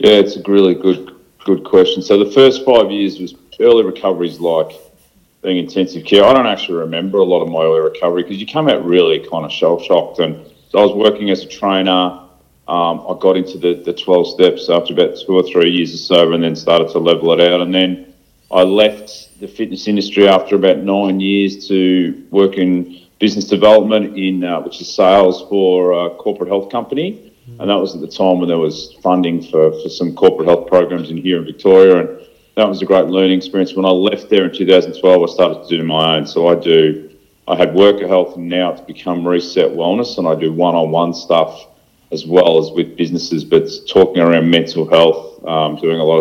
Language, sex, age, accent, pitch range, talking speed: English, male, 40-59, Australian, 85-100 Hz, 215 wpm